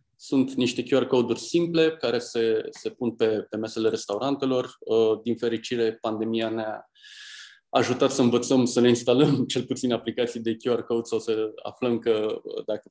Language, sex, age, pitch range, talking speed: Romanian, male, 20-39, 110-140 Hz, 160 wpm